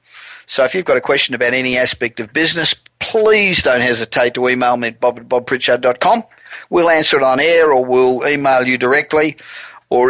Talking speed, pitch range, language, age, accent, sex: 190 wpm, 120-150 Hz, English, 50-69, Australian, male